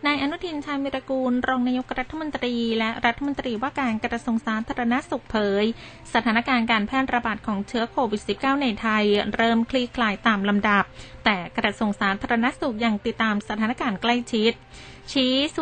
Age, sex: 20-39, female